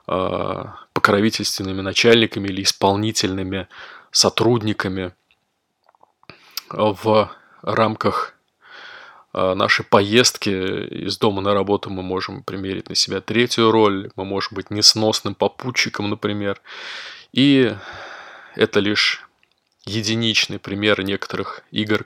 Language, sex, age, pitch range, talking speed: Russian, male, 20-39, 95-110 Hz, 90 wpm